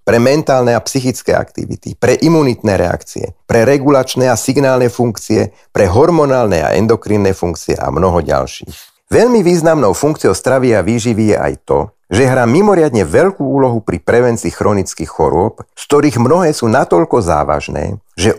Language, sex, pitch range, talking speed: Slovak, male, 95-140 Hz, 150 wpm